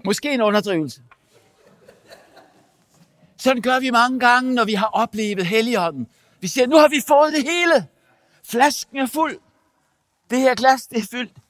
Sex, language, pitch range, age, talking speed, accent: male, English, 155-230 Hz, 60-79, 155 wpm, Danish